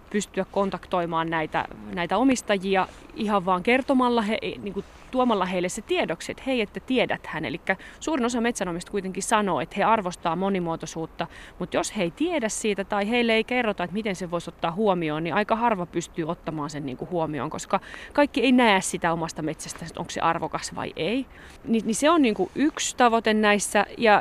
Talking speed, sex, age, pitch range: 165 wpm, female, 30-49, 180-230 Hz